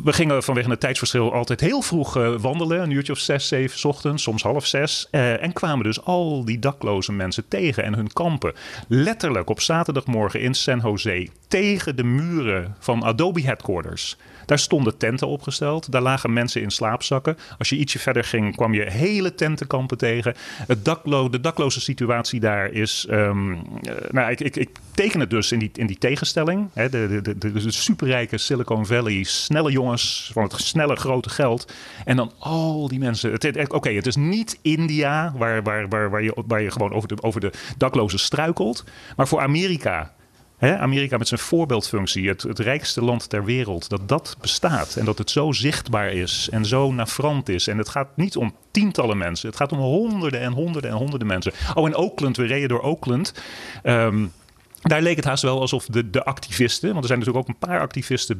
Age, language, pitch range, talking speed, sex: 30-49, English, 110-145 Hz, 195 wpm, male